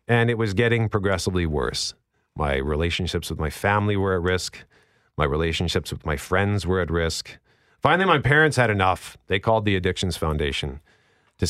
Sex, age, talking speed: male, 50-69, 170 wpm